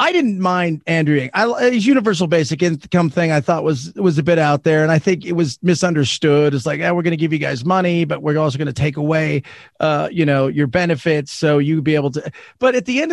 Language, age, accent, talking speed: English, 40-59, American, 260 wpm